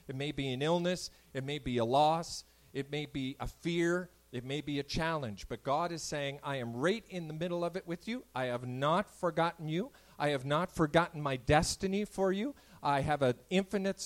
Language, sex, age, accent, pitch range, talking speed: English, male, 40-59, American, 130-170 Hz, 220 wpm